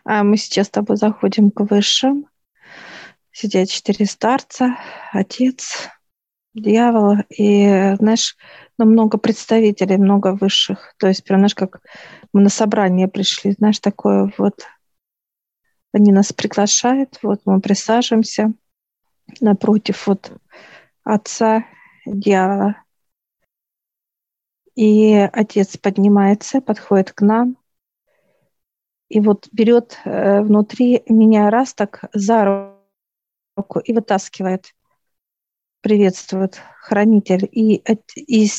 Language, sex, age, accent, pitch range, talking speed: Russian, female, 40-59, native, 195-220 Hz, 95 wpm